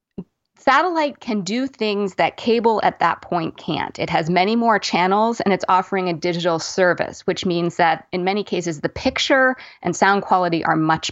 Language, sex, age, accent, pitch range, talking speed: English, female, 30-49, American, 170-215 Hz, 185 wpm